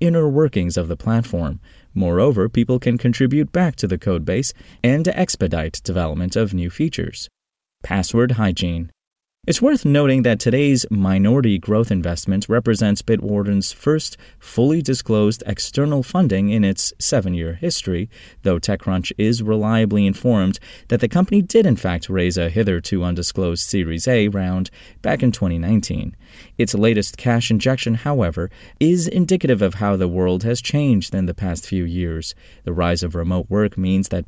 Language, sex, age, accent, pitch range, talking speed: English, male, 30-49, American, 90-125 Hz, 155 wpm